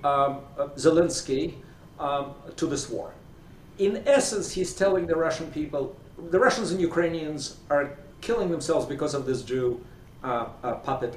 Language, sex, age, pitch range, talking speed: English, male, 50-69, 125-175 Hz, 150 wpm